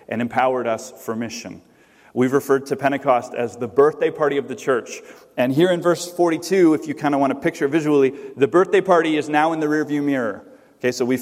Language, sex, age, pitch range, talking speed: English, male, 30-49, 130-175 Hz, 225 wpm